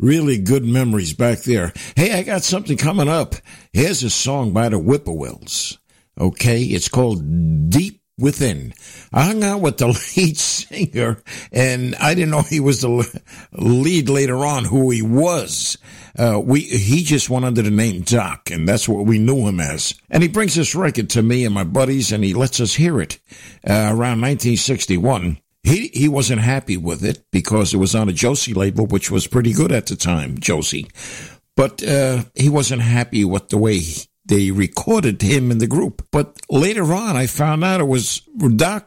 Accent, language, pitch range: American, English, 105-140 Hz